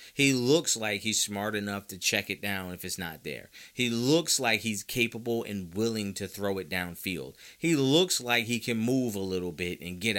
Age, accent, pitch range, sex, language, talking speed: 30-49, American, 95-130 Hz, male, English, 210 wpm